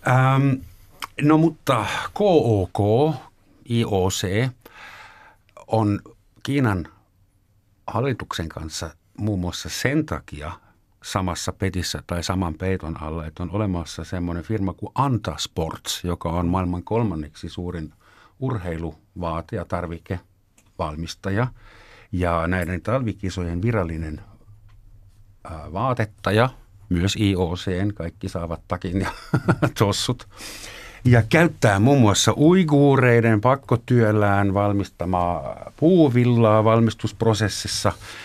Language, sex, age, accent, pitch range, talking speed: Finnish, male, 50-69, native, 90-115 Hz, 80 wpm